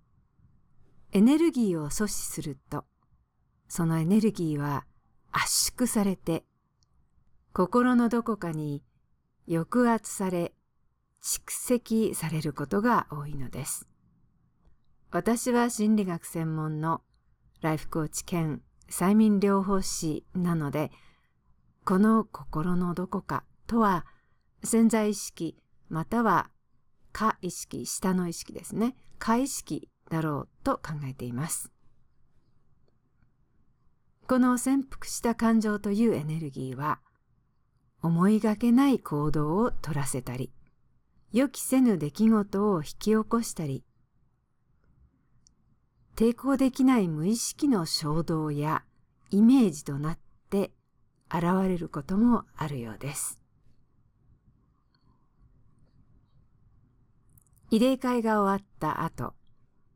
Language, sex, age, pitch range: English, female, 50-69, 135-215 Hz